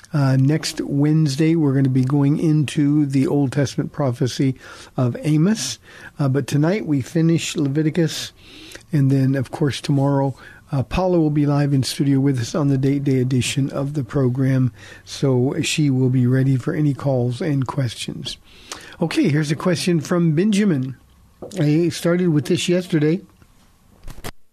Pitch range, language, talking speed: 140-165 Hz, English, 155 wpm